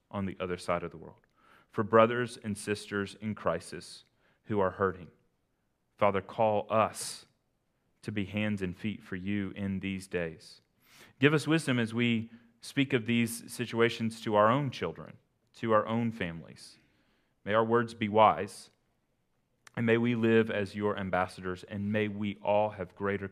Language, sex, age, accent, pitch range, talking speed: English, male, 30-49, American, 100-115 Hz, 165 wpm